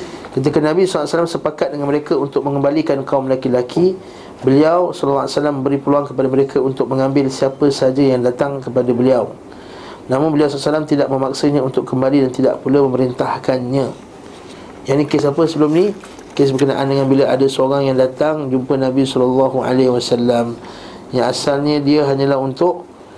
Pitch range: 130-155 Hz